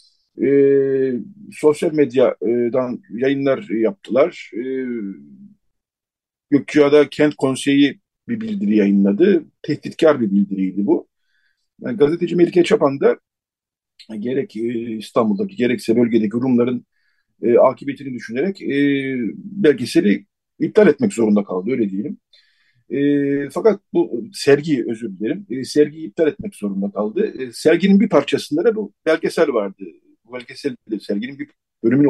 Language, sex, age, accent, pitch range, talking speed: Turkish, male, 50-69, native, 120-165 Hz, 120 wpm